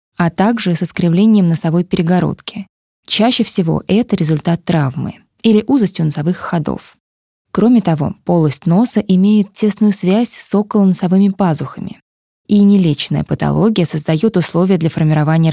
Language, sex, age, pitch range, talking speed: Russian, female, 20-39, 165-205 Hz, 125 wpm